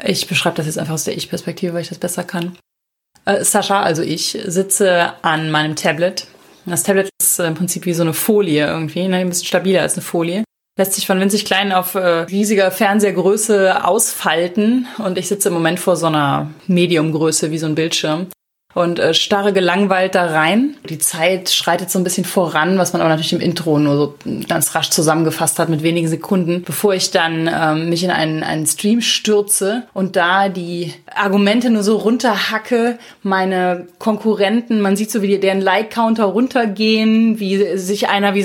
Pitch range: 170-205 Hz